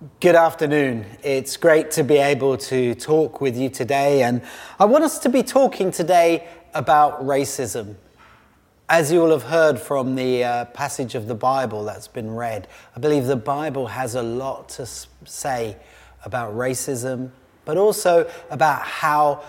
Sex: male